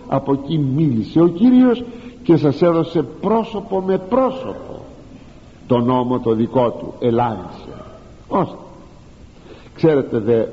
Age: 60-79